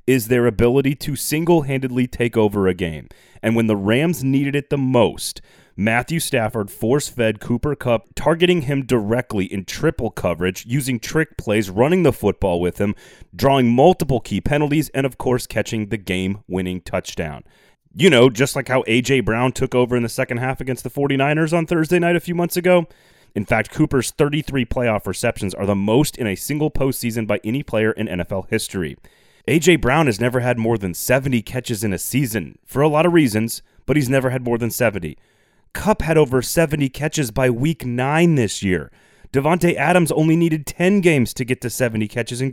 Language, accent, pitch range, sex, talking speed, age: English, American, 110-145 Hz, male, 190 wpm, 30-49